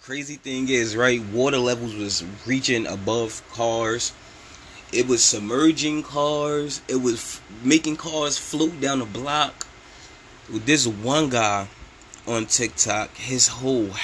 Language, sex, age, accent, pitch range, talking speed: English, male, 20-39, American, 105-130 Hz, 135 wpm